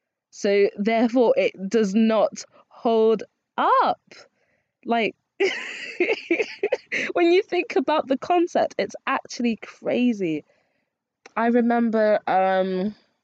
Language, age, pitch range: English, 20-39, 170-260 Hz